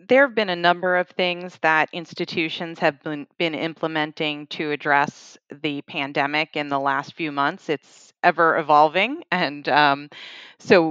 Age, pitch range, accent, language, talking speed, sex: 30-49, 150-170 Hz, American, English, 150 wpm, female